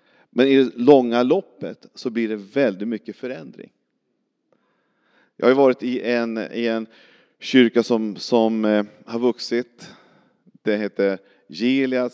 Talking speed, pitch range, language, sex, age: 130 wpm, 105-125 Hz, Swedish, male, 40-59